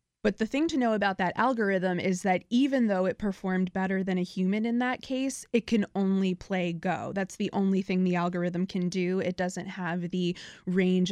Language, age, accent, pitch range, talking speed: English, 20-39, American, 180-200 Hz, 210 wpm